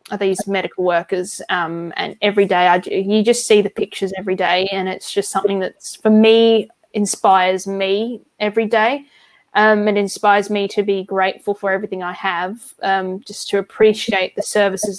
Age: 10-29